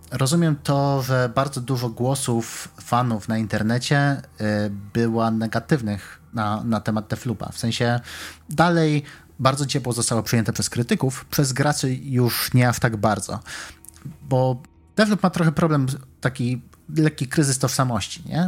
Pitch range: 115-140 Hz